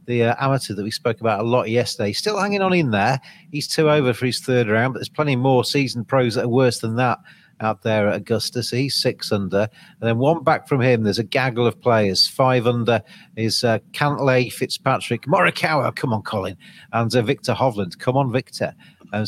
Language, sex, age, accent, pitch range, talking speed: English, male, 40-59, British, 115-140 Hz, 220 wpm